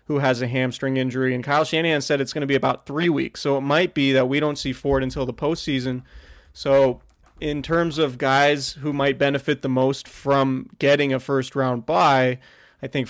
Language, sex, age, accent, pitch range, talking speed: English, male, 30-49, American, 130-140 Hz, 210 wpm